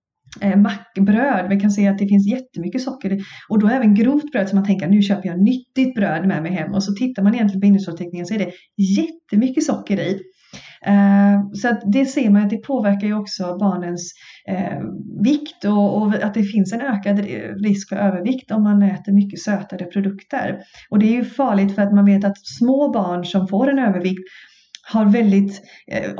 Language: Swedish